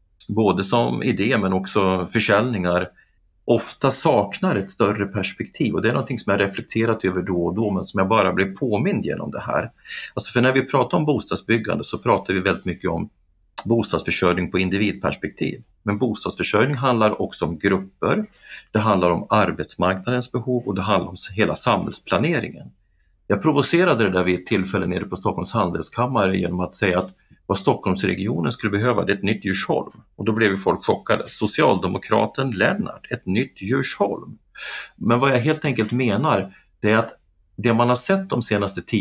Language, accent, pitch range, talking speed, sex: Swedish, native, 95-120 Hz, 175 wpm, male